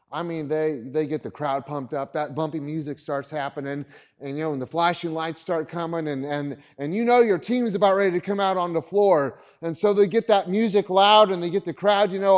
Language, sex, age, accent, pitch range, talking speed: English, male, 30-49, American, 160-230 Hz, 250 wpm